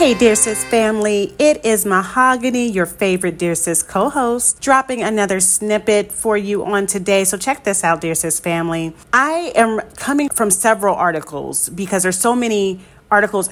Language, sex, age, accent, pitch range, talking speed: English, female, 40-59, American, 180-230 Hz, 165 wpm